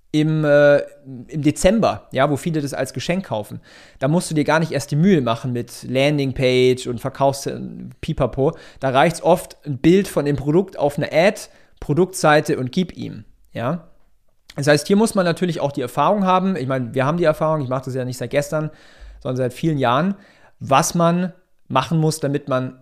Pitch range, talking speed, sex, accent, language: 135-175 Hz, 195 wpm, male, German, German